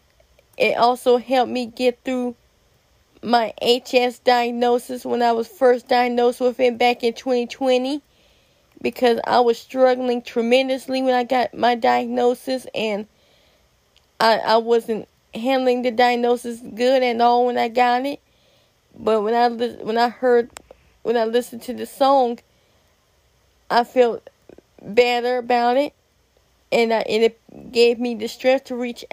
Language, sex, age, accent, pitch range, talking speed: English, female, 20-39, American, 235-255 Hz, 145 wpm